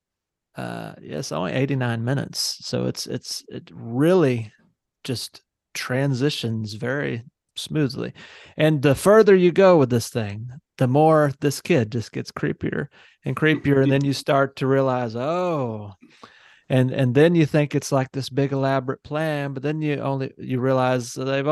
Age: 30-49